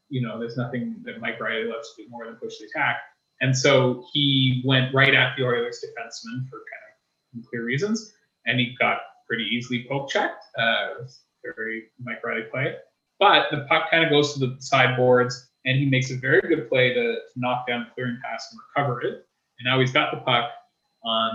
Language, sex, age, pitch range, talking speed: English, male, 20-39, 120-150 Hz, 205 wpm